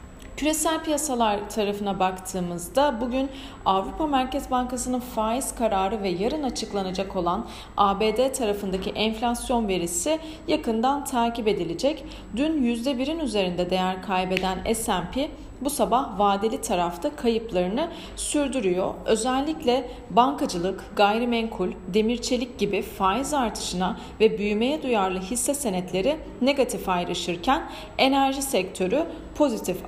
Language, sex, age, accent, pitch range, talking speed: Turkish, female, 40-59, native, 190-260 Hz, 100 wpm